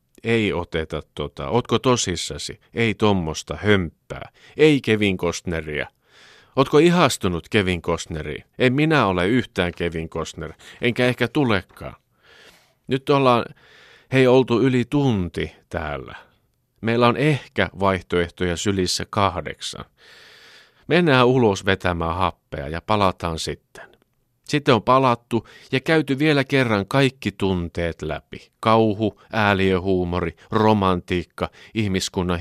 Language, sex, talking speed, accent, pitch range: Finnish, male, 105 wpm, native, 85-125 Hz